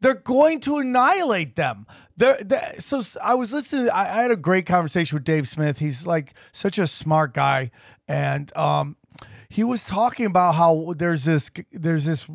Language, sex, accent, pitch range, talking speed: English, male, American, 155-215 Hz, 175 wpm